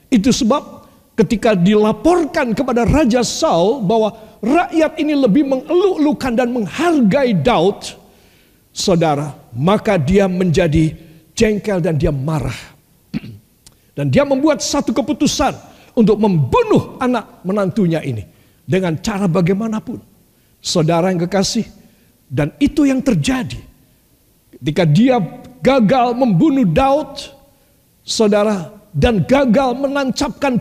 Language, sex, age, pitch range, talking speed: Indonesian, male, 50-69, 170-260 Hz, 100 wpm